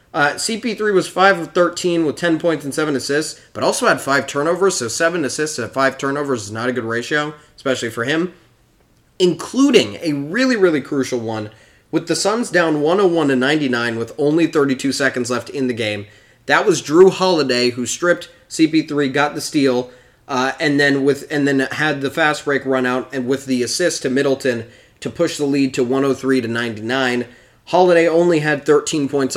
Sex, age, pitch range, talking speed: male, 20-39, 125-175 Hz, 200 wpm